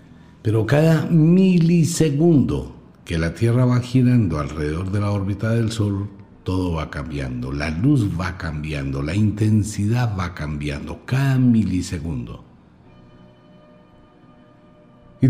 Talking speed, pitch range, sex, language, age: 110 wpm, 75-125 Hz, male, Spanish, 60-79